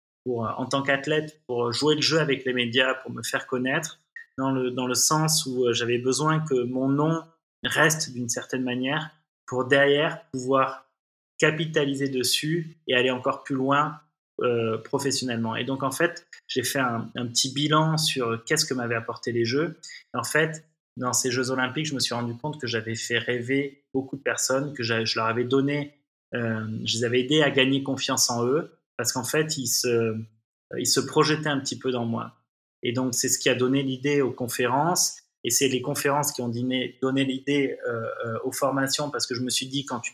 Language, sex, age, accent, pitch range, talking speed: French, male, 20-39, French, 120-145 Hz, 205 wpm